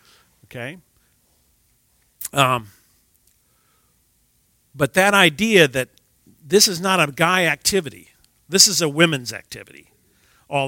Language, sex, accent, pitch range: English, male, American, 115-155 Hz